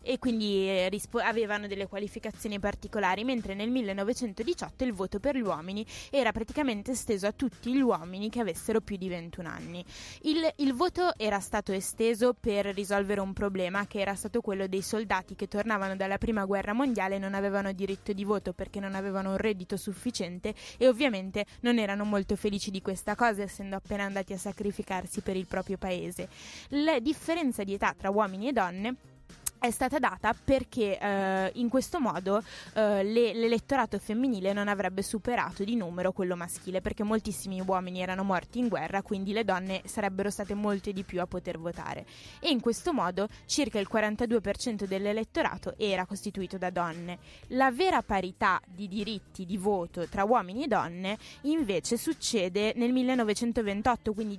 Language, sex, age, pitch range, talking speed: Italian, female, 20-39, 195-235 Hz, 170 wpm